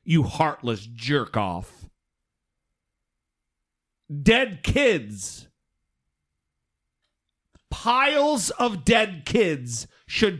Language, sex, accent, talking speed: English, male, American, 60 wpm